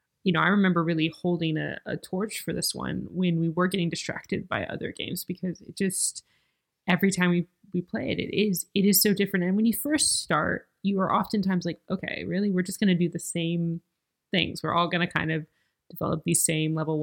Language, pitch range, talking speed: English, 165-195 Hz, 225 wpm